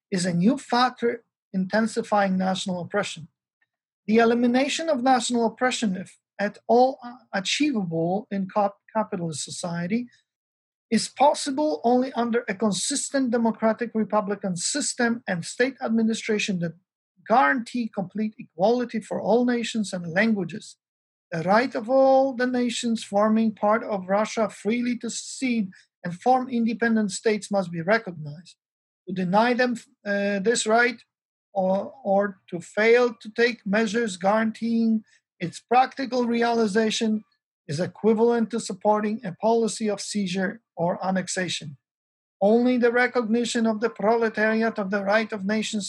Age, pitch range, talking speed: 50-69, 195-235 Hz, 130 wpm